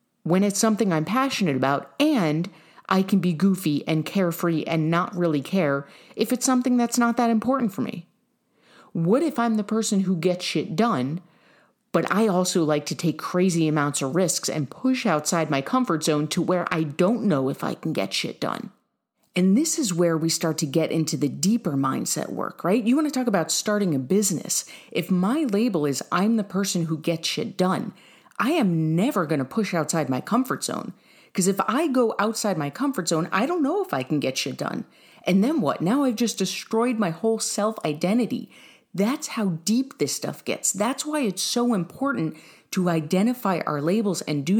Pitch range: 160-230 Hz